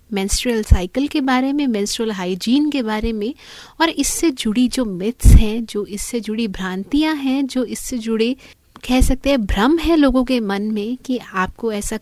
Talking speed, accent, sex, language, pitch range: 180 wpm, native, female, Hindi, 200-255 Hz